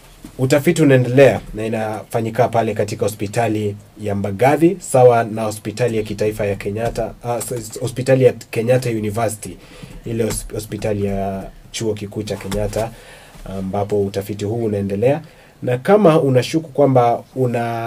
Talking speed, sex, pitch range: 120 wpm, male, 100-120 Hz